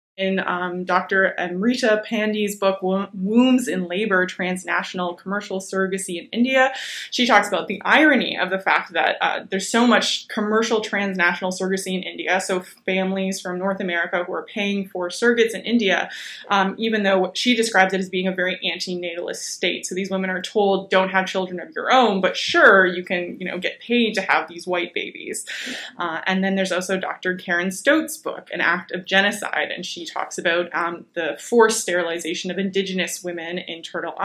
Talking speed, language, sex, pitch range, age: 185 wpm, English, female, 180-210 Hz, 20-39